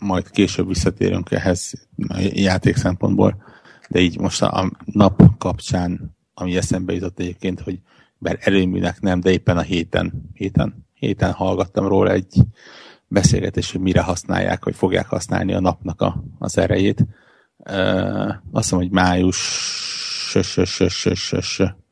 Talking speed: 125 wpm